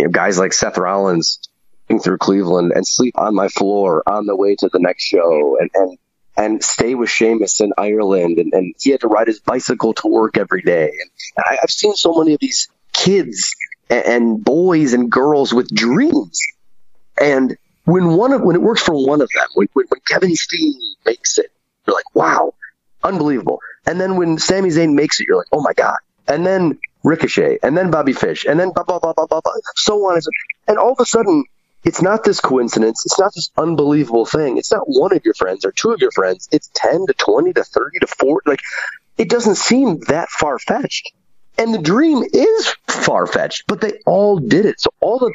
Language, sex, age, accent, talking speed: English, male, 30-49, American, 200 wpm